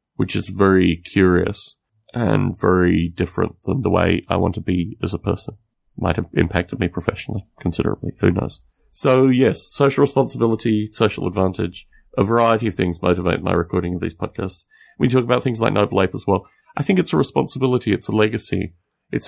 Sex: male